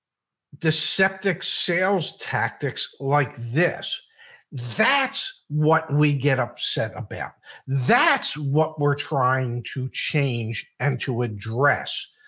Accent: American